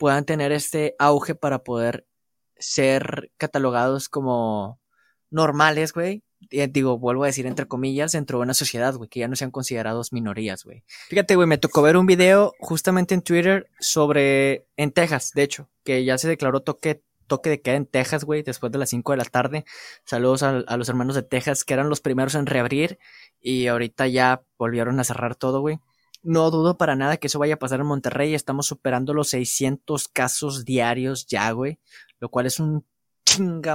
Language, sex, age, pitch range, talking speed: Spanish, male, 20-39, 125-155 Hz, 190 wpm